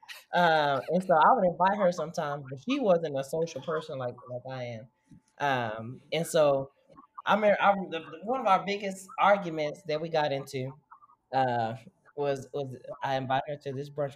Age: 30-49